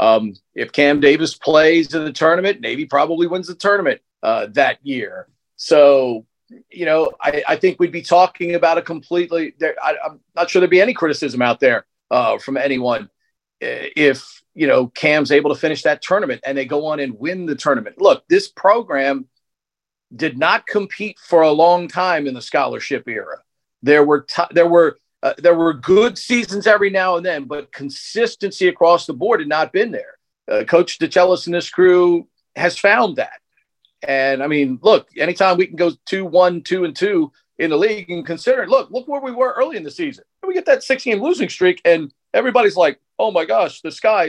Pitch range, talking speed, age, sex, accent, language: 150-220 Hz, 195 wpm, 40-59, male, American, English